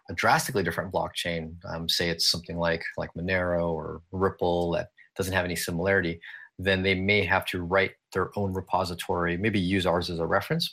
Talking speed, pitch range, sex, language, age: 185 wpm, 85-100 Hz, male, English, 30-49